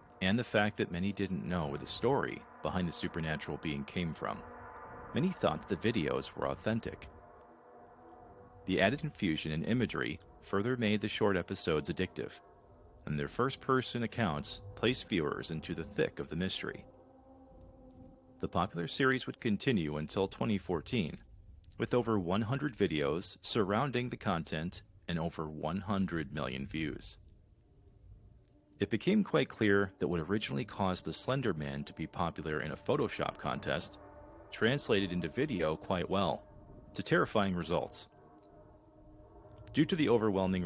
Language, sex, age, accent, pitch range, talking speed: English, male, 40-59, American, 80-110 Hz, 140 wpm